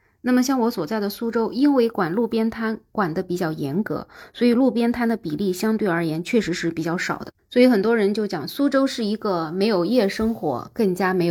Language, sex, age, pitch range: Chinese, female, 20-39, 180-235 Hz